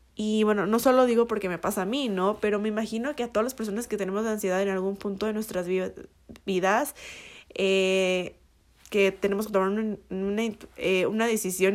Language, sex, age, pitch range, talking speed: Spanish, female, 20-39, 190-225 Hz, 195 wpm